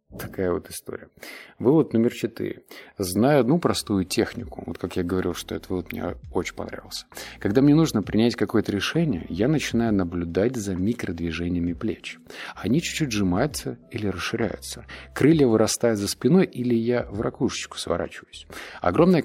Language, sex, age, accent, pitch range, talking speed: Russian, male, 30-49, native, 90-120 Hz, 145 wpm